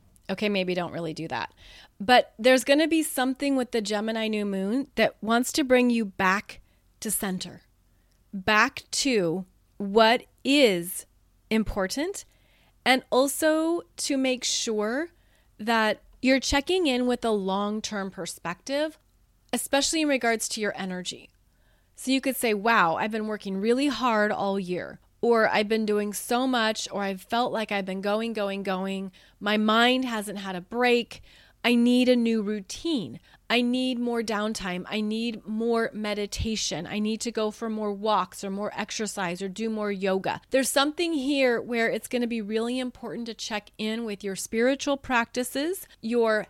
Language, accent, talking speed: English, American, 165 wpm